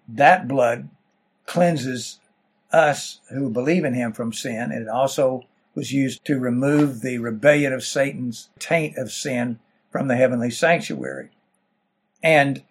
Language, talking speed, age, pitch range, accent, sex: English, 135 wpm, 60-79, 125-160 Hz, American, male